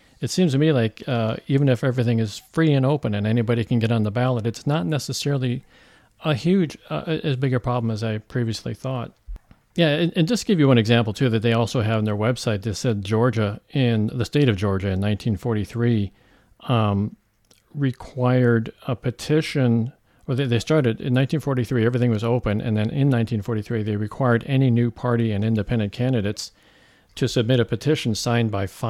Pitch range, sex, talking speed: 110-130 Hz, male, 185 wpm